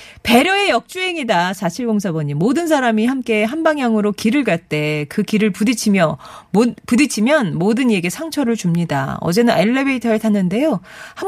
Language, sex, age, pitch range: Korean, female, 40-59, 180-270 Hz